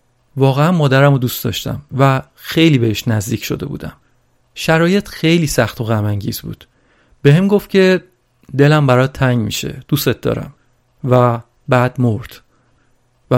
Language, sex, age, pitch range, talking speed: Persian, male, 40-59, 125-160 Hz, 145 wpm